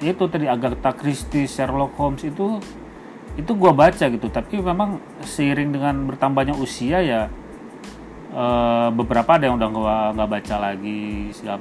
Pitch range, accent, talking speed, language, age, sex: 115-145 Hz, native, 140 wpm, Indonesian, 30-49, male